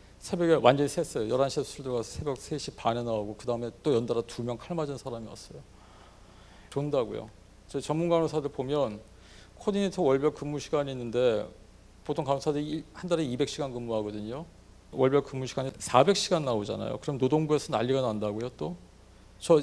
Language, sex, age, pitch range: Korean, male, 40-59, 105-155 Hz